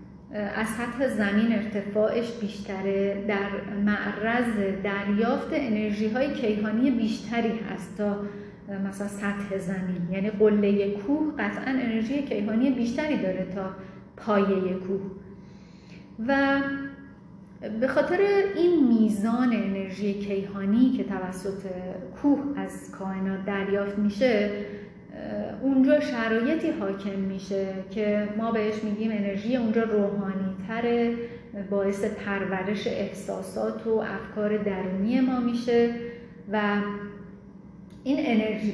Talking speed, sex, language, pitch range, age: 100 wpm, female, Persian, 195-235 Hz, 30-49